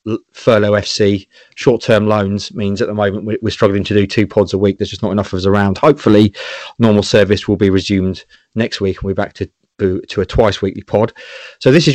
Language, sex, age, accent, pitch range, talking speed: English, male, 30-49, British, 105-135 Hz, 215 wpm